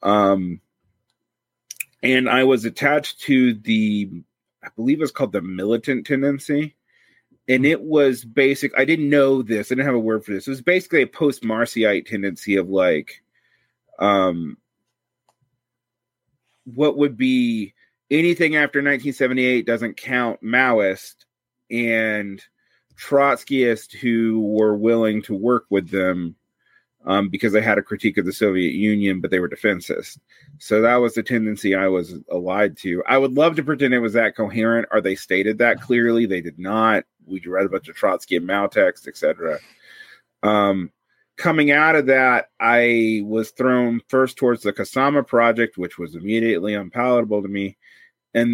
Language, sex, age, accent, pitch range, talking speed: English, male, 30-49, American, 105-130 Hz, 155 wpm